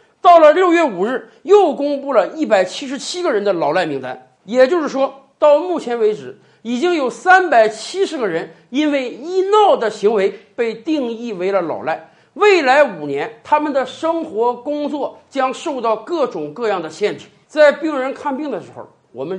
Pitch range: 200-320 Hz